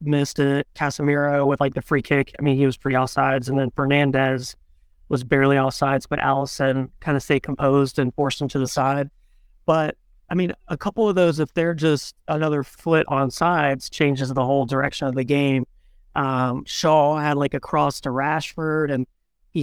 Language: English